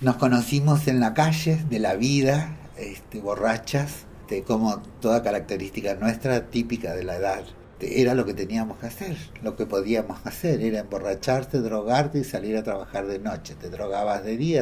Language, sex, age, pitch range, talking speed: Spanish, male, 60-79, 105-130 Hz, 170 wpm